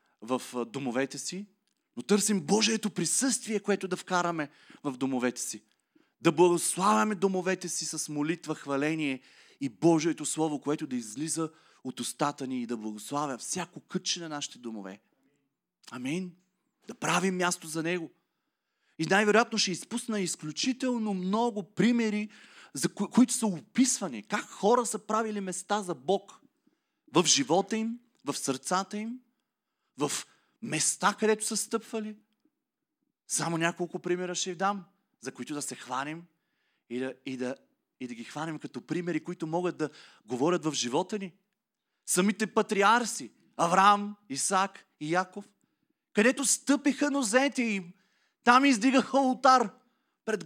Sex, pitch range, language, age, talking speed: male, 165-240 Hz, Bulgarian, 30-49, 135 wpm